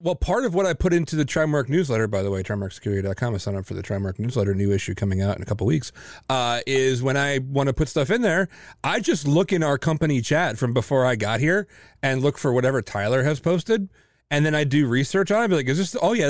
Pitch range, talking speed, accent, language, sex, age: 105-140 Hz, 265 wpm, American, English, male, 30-49